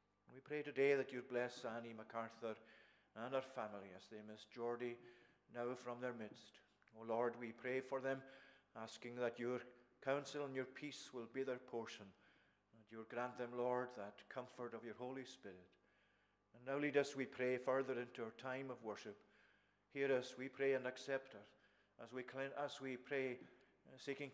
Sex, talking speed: male, 180 wpm